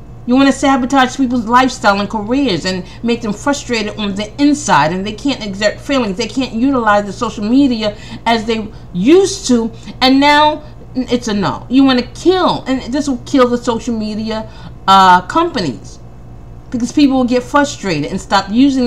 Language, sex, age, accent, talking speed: English, female, 40-59, American, 180 wpm